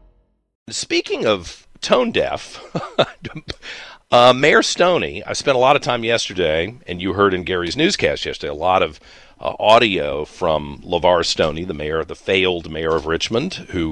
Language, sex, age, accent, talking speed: English, male, 50-69, American, 160 wpm